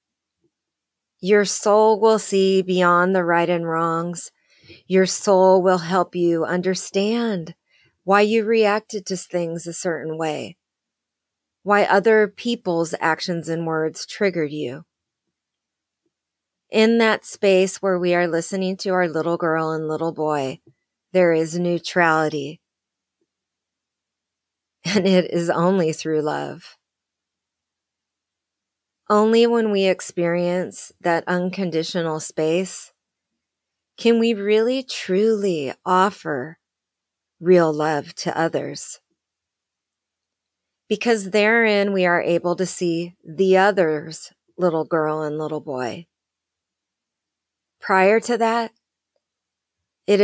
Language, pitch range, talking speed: English, 165-200 Hz, 105 wpm